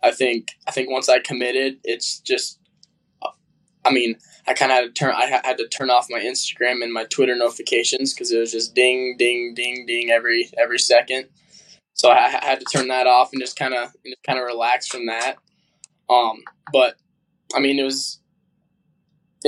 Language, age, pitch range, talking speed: English, 10-29, 125-170 Hz, 190 wpm